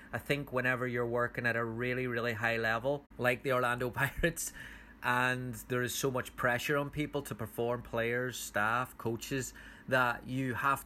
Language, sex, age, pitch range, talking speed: English, male, 30-49, 120-130 Hz, 170 wpm